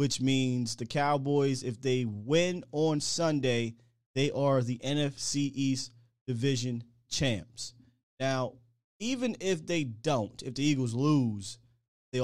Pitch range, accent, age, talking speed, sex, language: 115-140 Hz, American, 20-39, 125 wpm, male, English